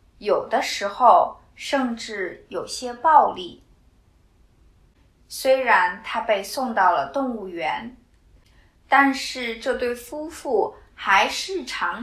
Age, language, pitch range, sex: 20-39, Chinese, 200-285 Hz, female